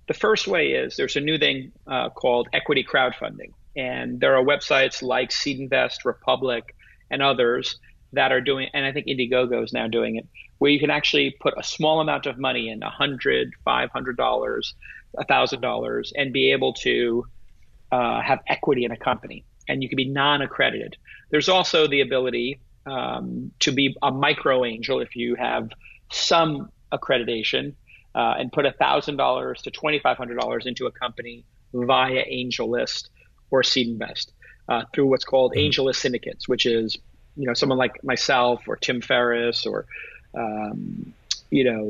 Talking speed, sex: 165 wpm, male